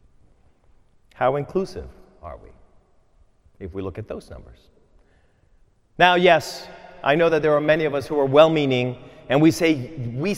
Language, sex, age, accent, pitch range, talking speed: English, male, 30-49, American, 150-230 Hz, 155 wpm